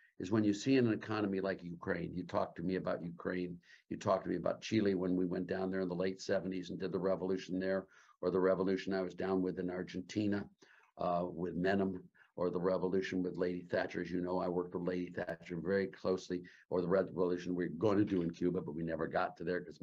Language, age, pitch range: Czech, 60-79, 90-100 Hz